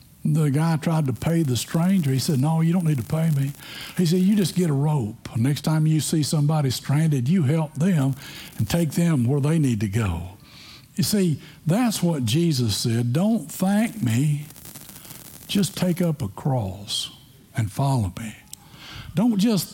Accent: American